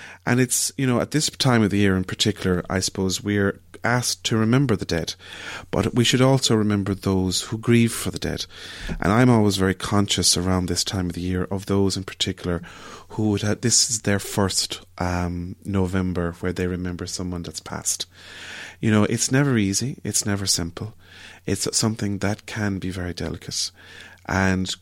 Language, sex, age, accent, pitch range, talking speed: English, male, 30-49, Irish, 90-110 Hz, 185 wpm